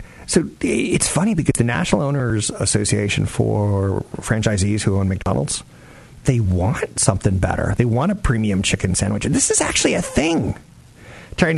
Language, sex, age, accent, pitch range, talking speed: English, male, 50-69, American, 100-140 Hz, 155 wpm